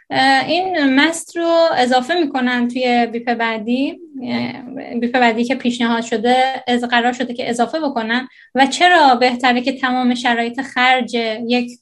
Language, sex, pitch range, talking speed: Persian, female, 240-280 Hz, 135 wpm